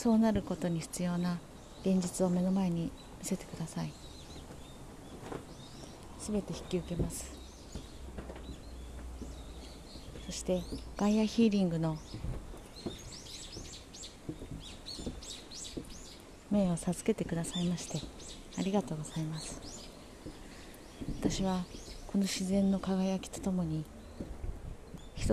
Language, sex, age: Japanese, female, 40-59